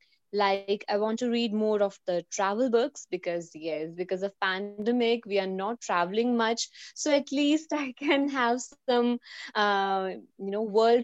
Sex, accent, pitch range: female, Indian, 200-240 Hz